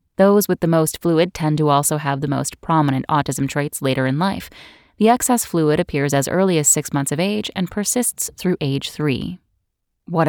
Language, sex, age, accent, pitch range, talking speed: English, female, 10-29, American, 145-180 Hz, 200 wpm